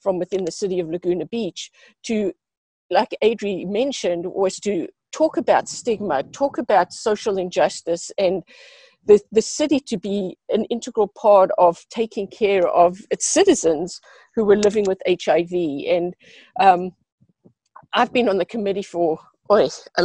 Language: English